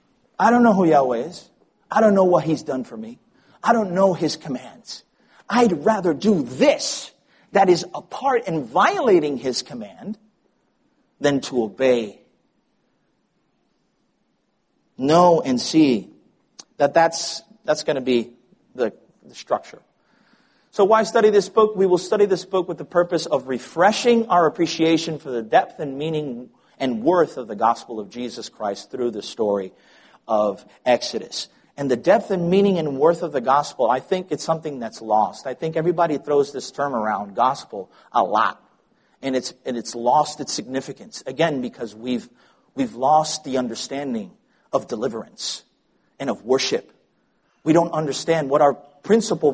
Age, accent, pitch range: 40-59, American, 135-215 Hz